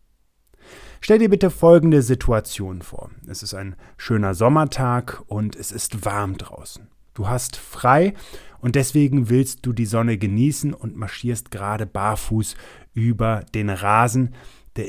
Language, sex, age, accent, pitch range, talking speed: German, male, 30-49, German, 105-135 Hz, 135 wpm